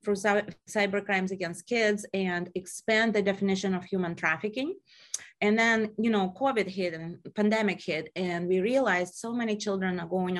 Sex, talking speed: female, 165 wpm